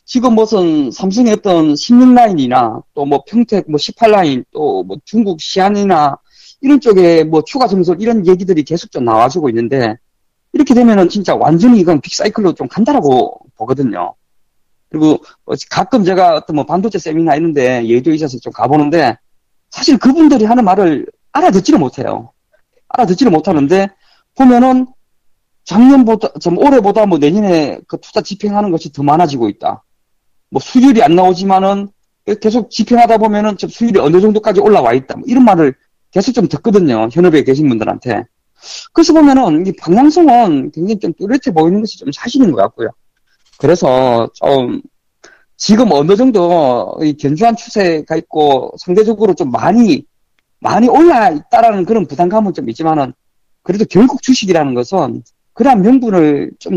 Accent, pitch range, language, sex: native, 170-255 Hz, Korean, male